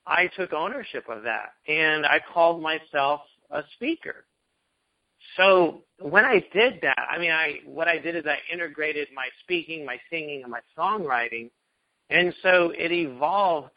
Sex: male